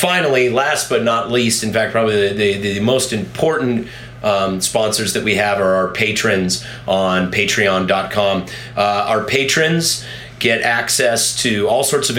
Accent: American